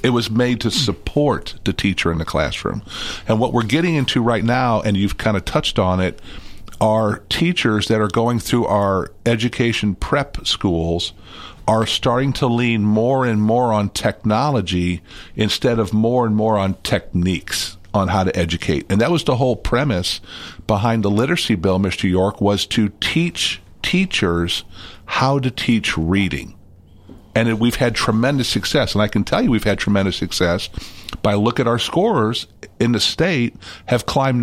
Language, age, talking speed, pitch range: English, 50-69, 170 wpm, 100-125 Hz